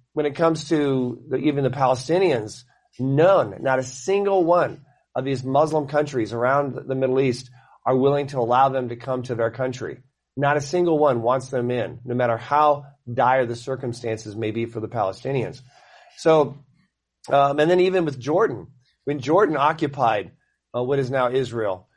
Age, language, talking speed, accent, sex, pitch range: 40-59, English, 175 wpm, American, male, 120-145 Hz